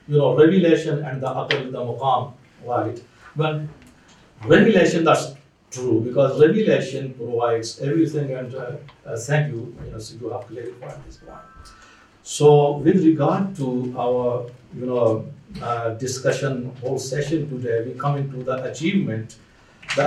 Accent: Indian